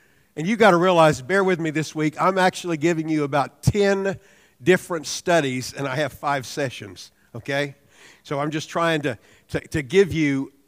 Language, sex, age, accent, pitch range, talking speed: English, male, 50-69, American, 140-175 Hz, 185 wpm